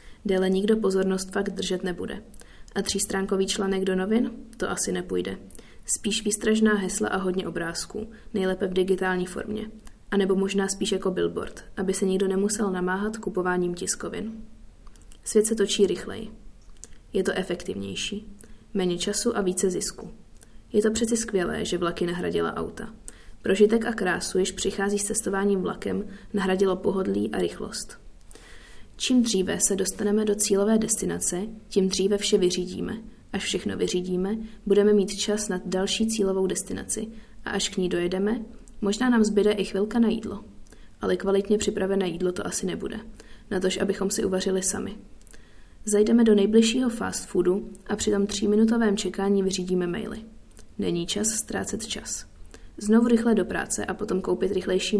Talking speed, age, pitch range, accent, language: 150 wpm, 20-39, 190-215 Hz, native, Czech